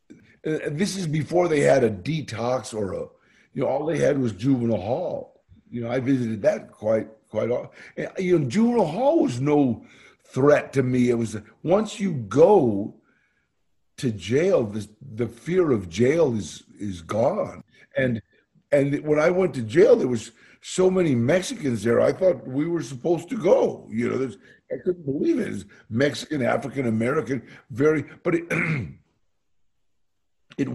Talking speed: 165 wpm